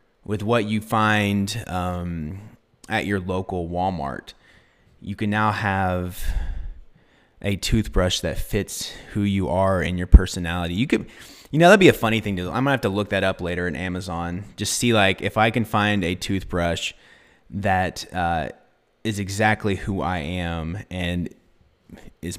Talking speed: 165 wpm